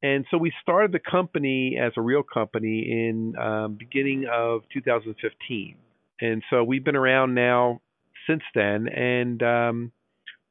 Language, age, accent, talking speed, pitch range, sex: English, 50-69, American, 145 wpm, 110-140 Hz, male